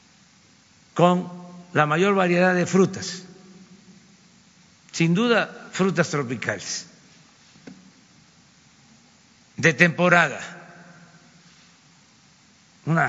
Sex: male